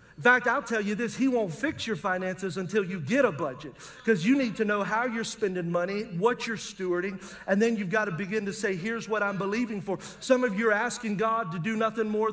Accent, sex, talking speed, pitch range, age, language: American, male, 250 wpm, 190-230 Hz, 40-59, English